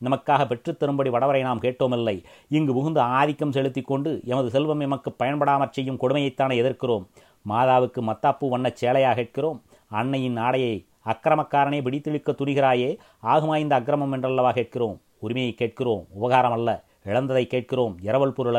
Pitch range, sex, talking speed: 120-140 Hz, male, 125 wpm